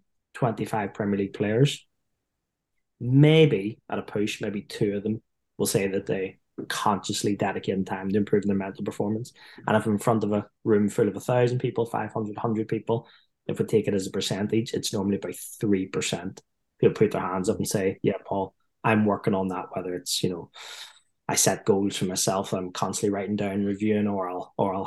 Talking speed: 200 wpm